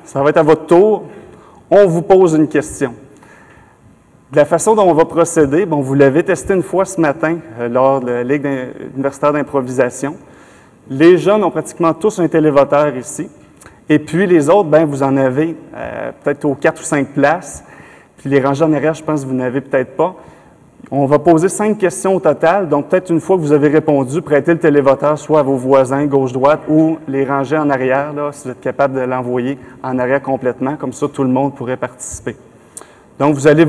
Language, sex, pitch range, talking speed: French, male, 135-165 Hz, 200 wpm